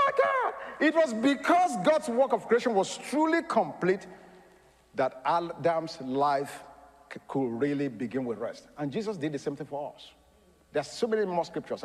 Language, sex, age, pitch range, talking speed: English, male, 50-69, 125-200 Hz, 155 wpm